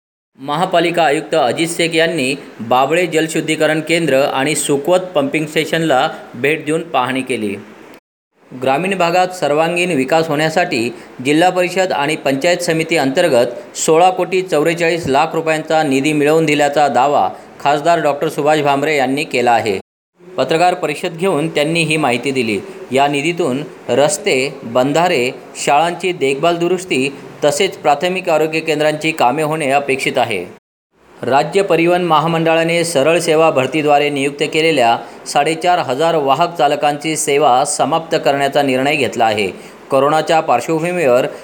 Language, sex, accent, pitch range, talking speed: Marathi, male, native, 140-170 Hz, 120 wpm